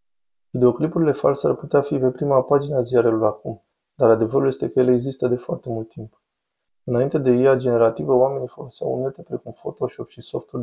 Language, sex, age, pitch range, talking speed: Romanian, male, 20-39, 115-130 Hz, 180 wpm